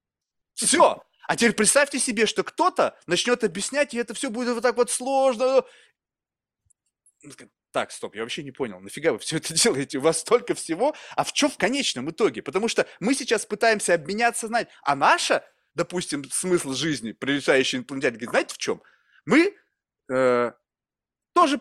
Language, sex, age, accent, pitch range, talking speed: Russian, male, 20-39, native, 165-235 Hz, 165 wpm